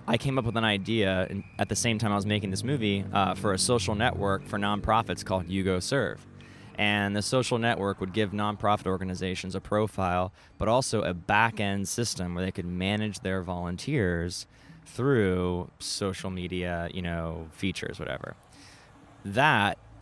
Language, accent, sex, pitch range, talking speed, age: English, American, male, 95-115 Hz, 160 wpm, 20-39